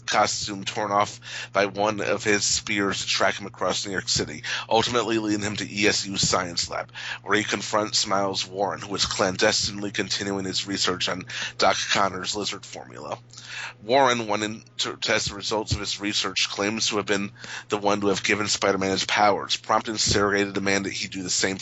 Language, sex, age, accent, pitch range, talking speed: English, male, 30-49, American, 100-115 Hz, 190 wpm